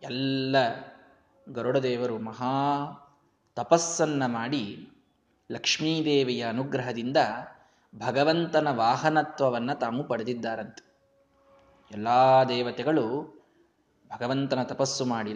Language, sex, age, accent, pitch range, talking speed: Kannada, male, 20-39, native, 130-150 Hz, 65 wpm